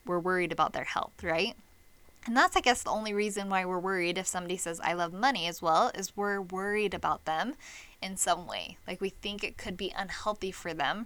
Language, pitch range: English, 195-235 Hz